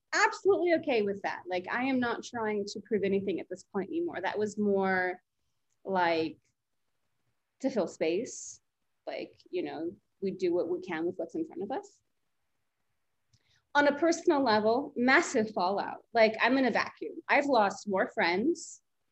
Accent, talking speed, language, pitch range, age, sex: American, 165 wpm, English, 190-290 Hz, 30-49, female